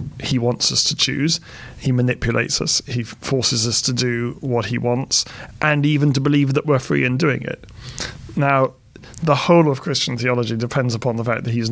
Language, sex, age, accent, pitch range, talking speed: English, male, 40-59, British, 115-135 Hz, 195 wpm